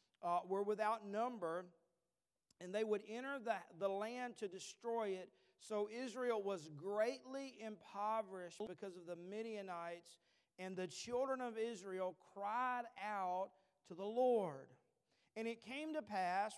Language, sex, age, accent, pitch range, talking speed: English, male, 50-69, American, 170-215 Hz, 140 wpm